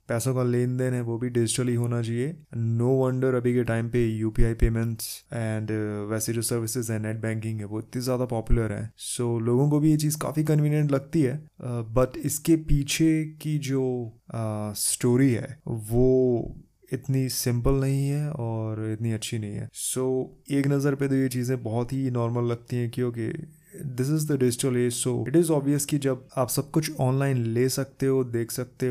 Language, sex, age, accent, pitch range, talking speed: Hindi, male, 20-39, native, 115-140 Hz, 195 wpm